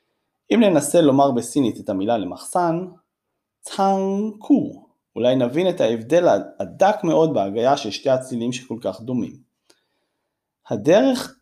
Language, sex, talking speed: Hebrew, male, 115 wpm